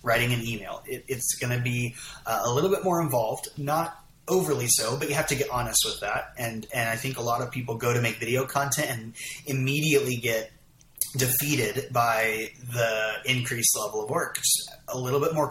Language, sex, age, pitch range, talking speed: English, male, 30-49, 115-140 Hz, 195 wpm